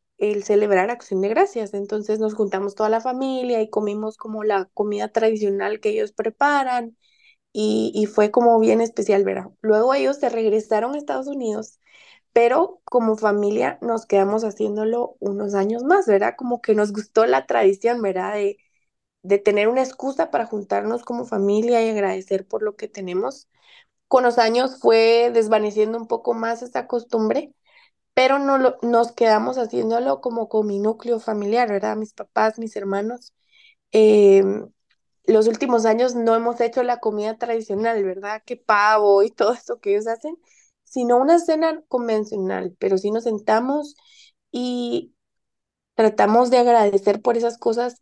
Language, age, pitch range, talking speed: Spanish, 20-39, 210-245 Hz, 160 wpm